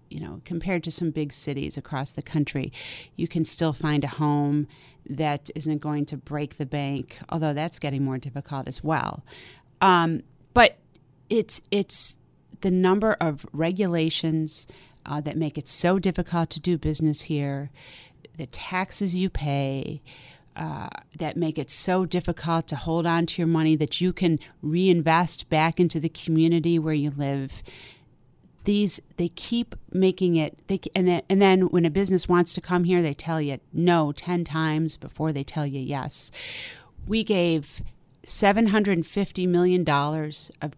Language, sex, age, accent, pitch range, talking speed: English, female, 40-59, American, 145-175 Hz, 160 wpm